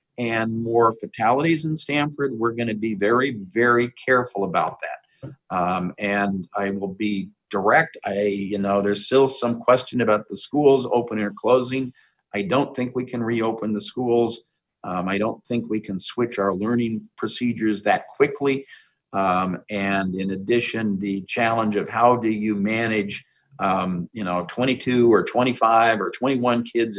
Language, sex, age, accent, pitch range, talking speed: English, male, 50-69, American, 100-125 Hz, 160 wpm